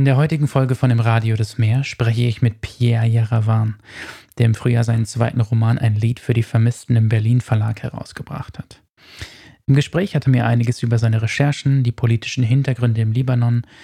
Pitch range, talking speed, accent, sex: 115-125 Hz, 190 wpm, German, male